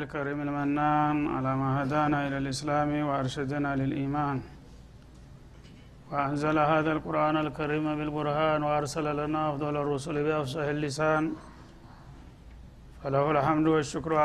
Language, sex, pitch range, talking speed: Amharic, male, 150-155 Hz, 95 wpm